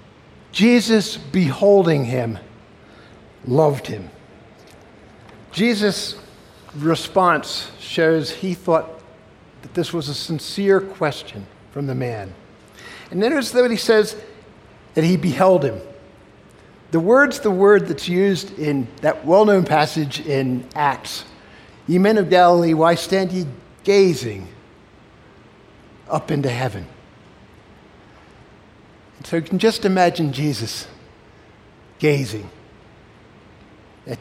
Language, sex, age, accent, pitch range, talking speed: English, male, 60-79, American, 110-170 Hz, 100 wpm